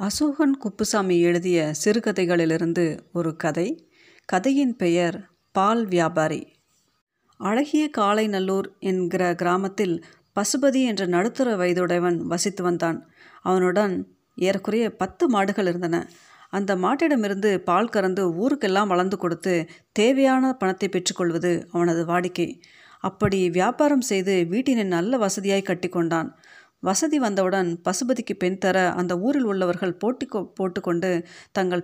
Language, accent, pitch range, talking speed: Tamil, native, 175-220 Hz, 105 wpm